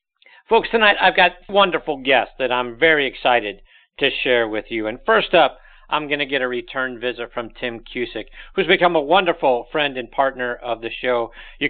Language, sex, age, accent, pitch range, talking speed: English, male, 50-69, American, 125-175 Hz, 195 wpm